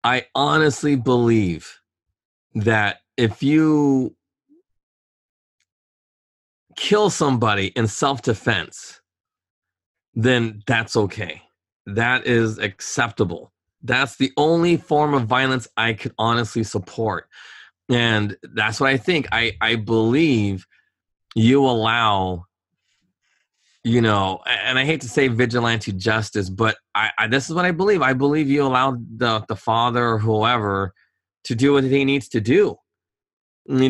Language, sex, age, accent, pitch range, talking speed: English, male, 30-49, American, 110-140 Hz, 125 wpm